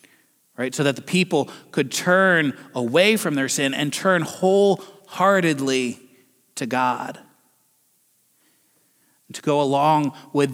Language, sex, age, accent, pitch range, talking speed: English, male, 30-49, American, 130-175 Hz, 115 wpm